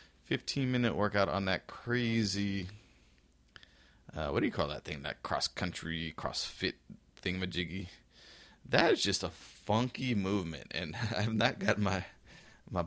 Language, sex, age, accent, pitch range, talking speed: English, male, 30-49, American, 80-95 Hz, 145 wpm